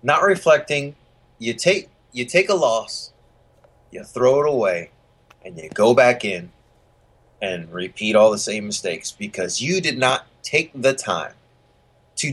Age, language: 30-49, English